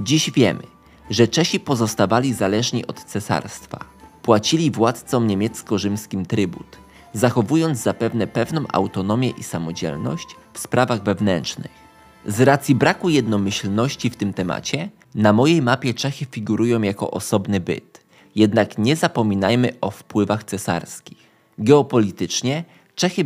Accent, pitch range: native, 105-135 Hz